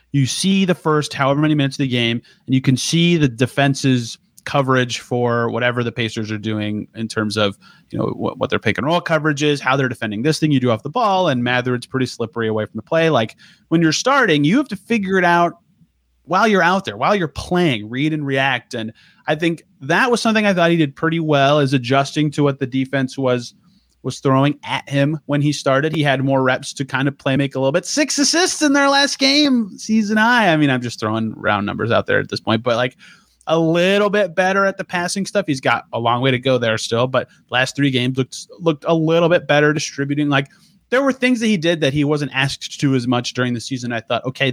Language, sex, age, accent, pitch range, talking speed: English, male, 30-49, American, 125-170 Hz, 245 wpm